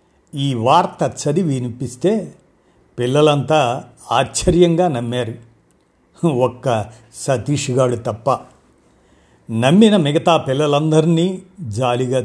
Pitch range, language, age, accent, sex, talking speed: 120-170 Hz, Telugu, 50-69, native, male, 70 wpm